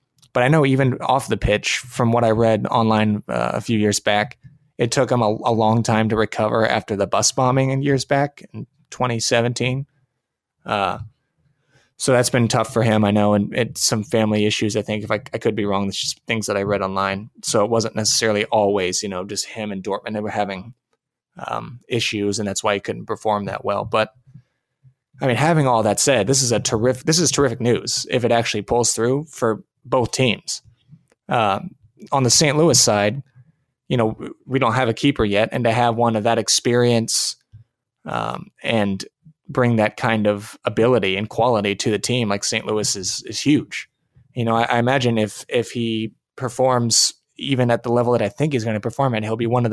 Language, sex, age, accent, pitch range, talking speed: English, male, 20-39, American, 110-130 Hz, 210 wpm